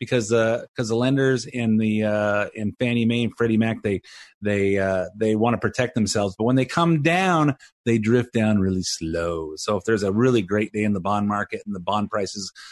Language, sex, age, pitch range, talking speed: English, male, 30-49, 115-140 Hz, 220 wpm